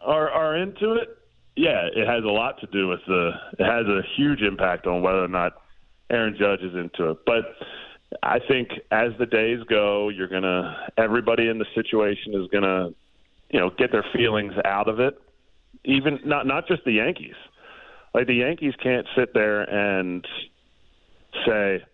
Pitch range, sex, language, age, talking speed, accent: 95-125 Hz, male, English, 30-49, 190 wpm, American